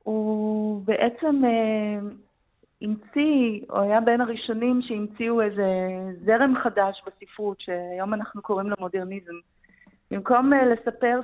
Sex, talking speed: female, 110 wpm